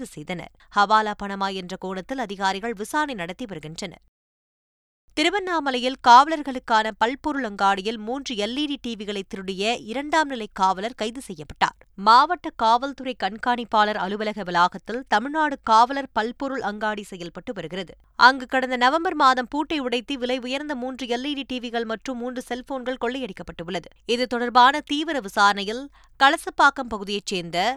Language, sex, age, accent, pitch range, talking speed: Tamil, female, 20-39, native, 205-265 Hz, 115 wpm